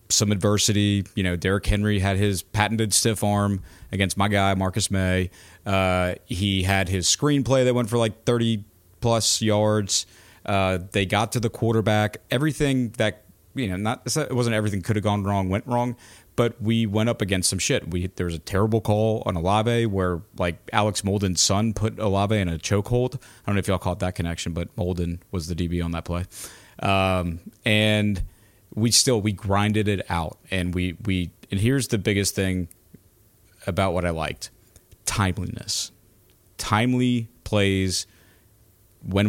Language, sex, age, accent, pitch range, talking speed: English, male, 30-49, American, 95-110 Hz, 175 wpm